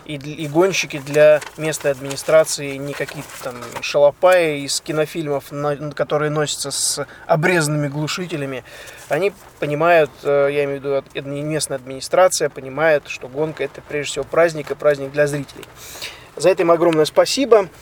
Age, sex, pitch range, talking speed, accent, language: 20-39, male, 145-170 Hz, 135 wpm, native, Russian